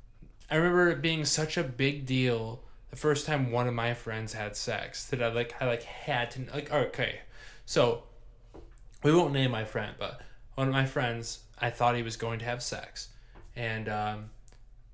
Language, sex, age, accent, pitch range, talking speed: English, male, 20-39, American, 115-145 Hz, 190 wpm